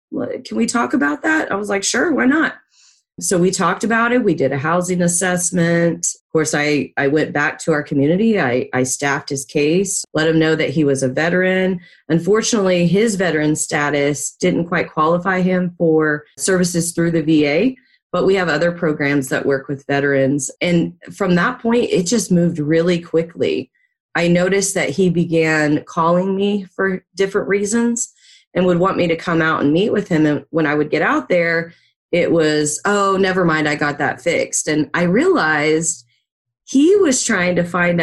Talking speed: 190 wpm